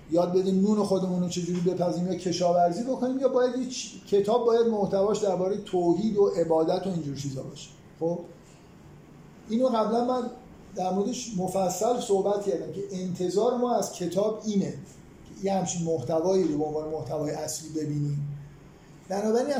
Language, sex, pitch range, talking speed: Persian, male, 160-190 Hz, 155 wpm